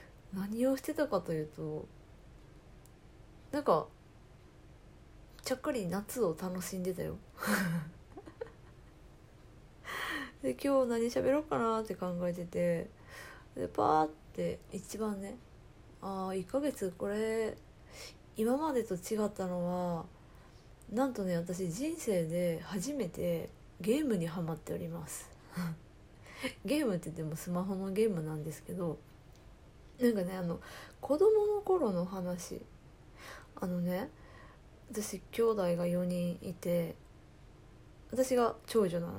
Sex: female